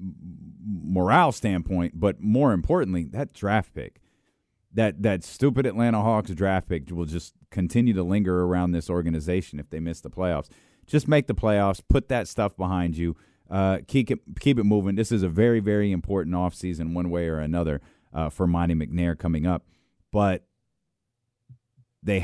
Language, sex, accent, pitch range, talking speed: English, male, American, 85-115 Hz, 165 wpm